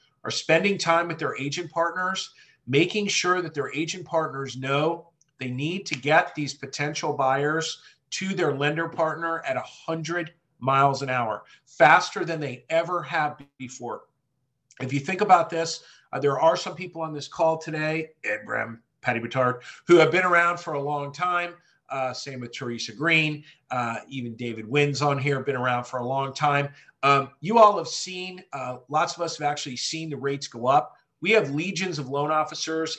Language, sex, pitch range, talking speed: English, male, 130-160 Hz, 185 wpm